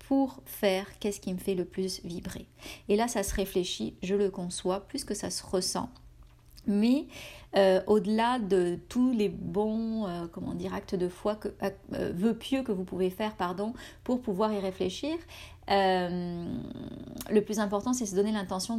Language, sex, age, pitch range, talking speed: French, female, 40-59, 185-225 Hz, 175 wpm